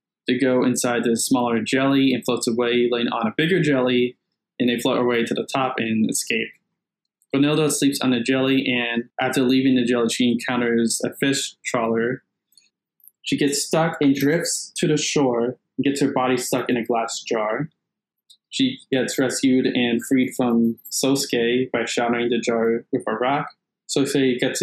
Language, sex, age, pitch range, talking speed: English, male, 20-39, 120-140 Hz, 170 wpm